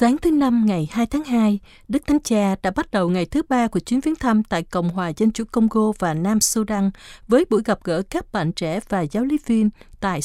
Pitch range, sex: 185-250 Hz, female